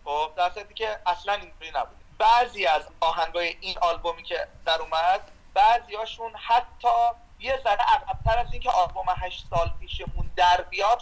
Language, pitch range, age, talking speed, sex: Persian, 185-250 Hz, 40-59, 150 wpm, male